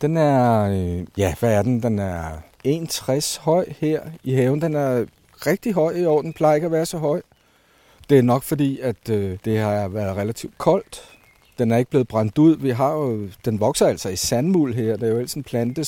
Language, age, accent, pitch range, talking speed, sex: Danish, 60-79, native, 110-145 Hz, 210 wpm, male